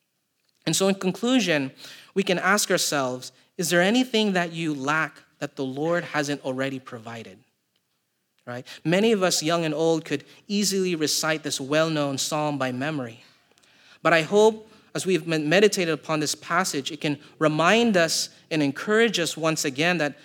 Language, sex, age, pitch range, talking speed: English, male, 30-49, 140-180 Hz, 160 wpm